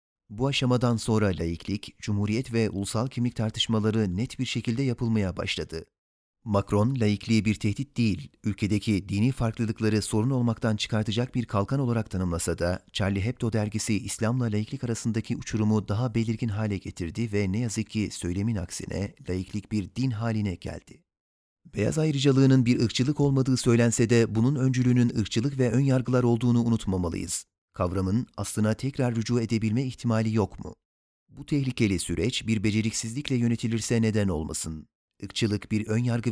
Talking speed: 140 wpm